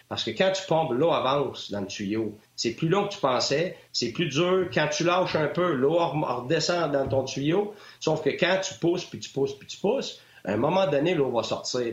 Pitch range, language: 125-180 Hz, French